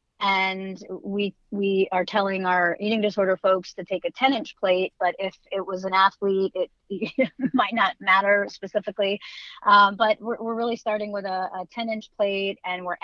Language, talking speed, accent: English, 185 wpm, American